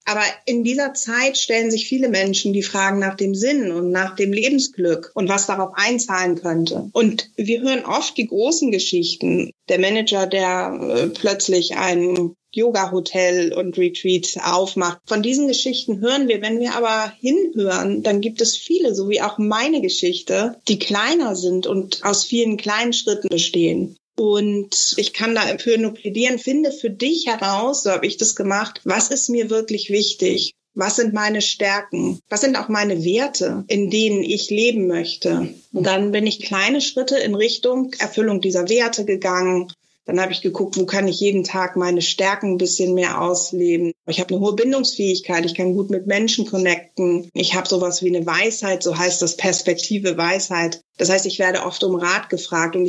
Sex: female